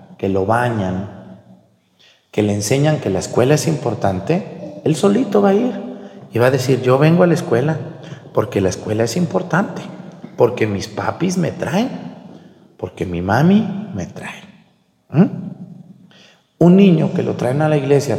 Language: Spanish